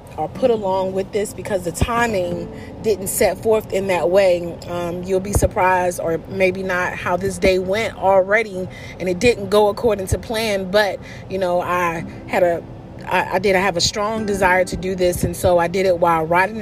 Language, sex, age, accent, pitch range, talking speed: English, female, 30-49, American, 175-205 Hz, 200 wpm